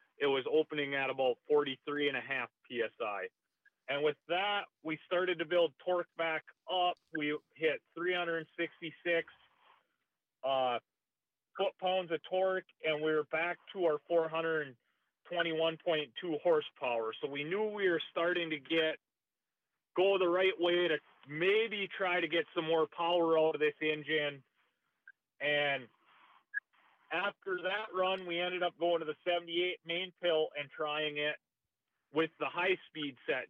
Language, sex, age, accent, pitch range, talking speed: English, male, 40-59, American, 150-180 Hz, 145 wpm